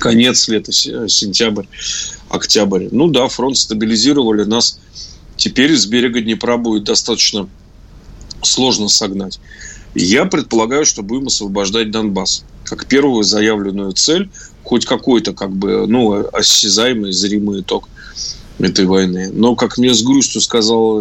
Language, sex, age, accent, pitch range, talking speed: Russian, male, 20-39, native, 105-120 Hz, 120 wpm